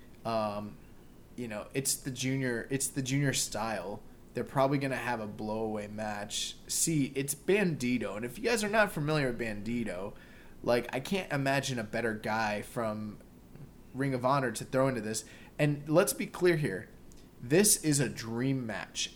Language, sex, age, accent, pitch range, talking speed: English, male, 20-39, American, 115-150 Hz, 170 wpm